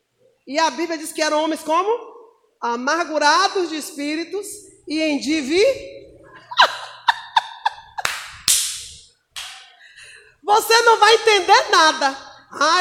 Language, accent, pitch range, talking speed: Portuguese, Brazilian, 300-390 Hz, 90 wpm